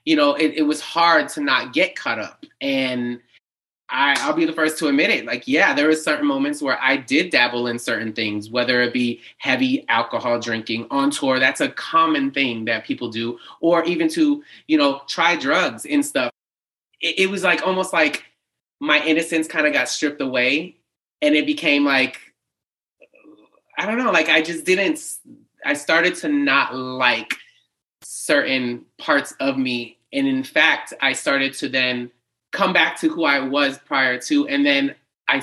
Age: 30-49